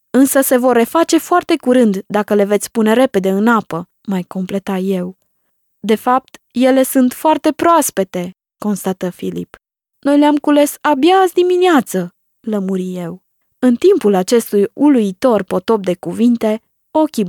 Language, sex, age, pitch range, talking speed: Romanian, female, 20-39, 195-250 Hz, 140 wpm